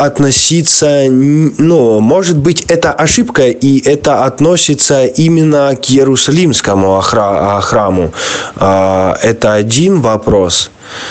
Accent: native